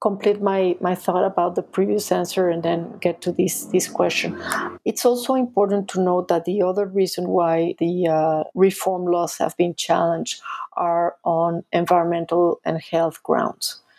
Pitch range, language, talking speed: 170-190 Hz, English, 165 wpm